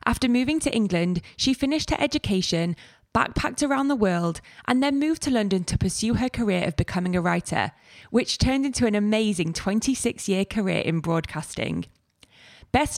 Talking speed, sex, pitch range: 160 wpm, female, 180-245 Hz